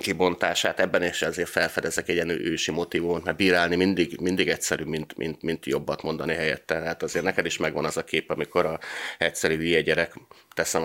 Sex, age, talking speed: male, 30-49, 190 wpm